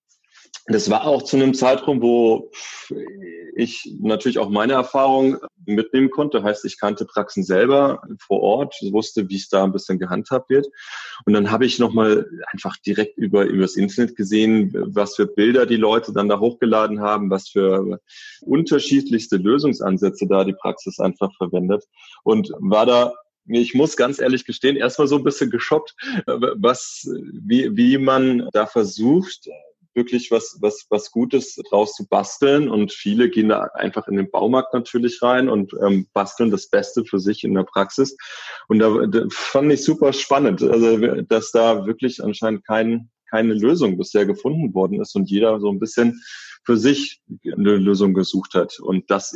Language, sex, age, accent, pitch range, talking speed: German, male, 30-49, German, 105-135 Hz, 165 wpm